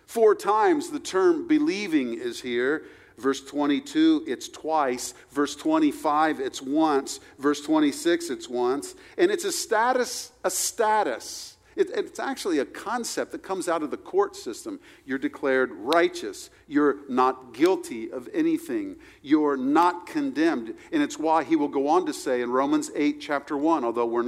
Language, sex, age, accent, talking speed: English, male, 50-69, American, 155 wpm